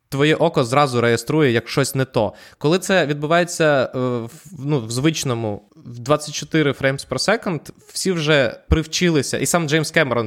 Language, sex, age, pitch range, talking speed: Ukrainian, male, 20-39, 120-150 Hz, 145 wpm